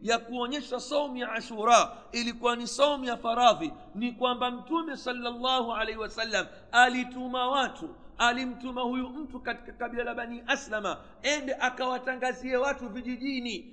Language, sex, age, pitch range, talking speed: Swahili, male, 50-69, 230-260 Hz, 130 wpm